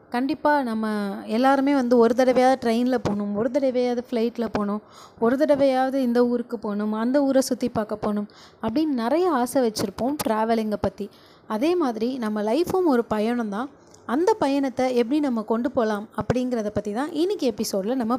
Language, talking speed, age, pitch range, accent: Tamil, 150 wpm, 20-39, 225-280 Hz, native